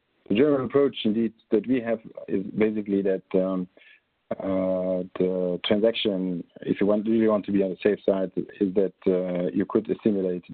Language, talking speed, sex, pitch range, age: English, 175 wpm, male, 90-100 Hz, 50-69